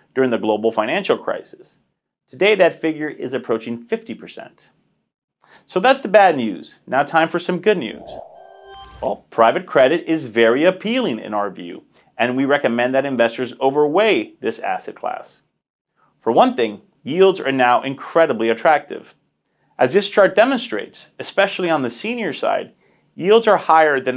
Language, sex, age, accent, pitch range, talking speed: English, male, 30-49, American, 120-185 Hz, 150 wpm